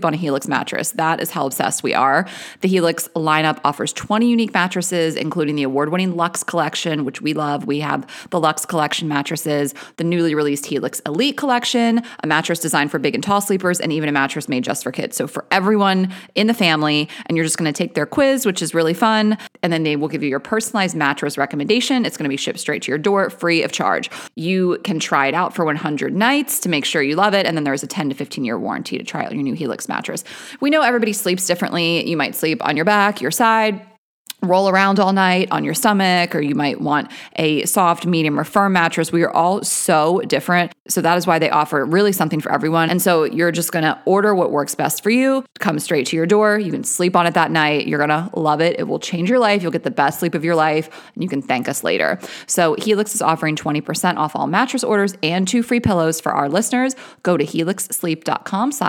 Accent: American